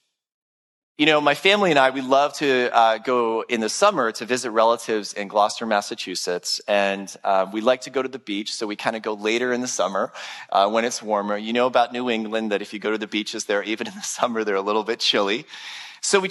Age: 30-49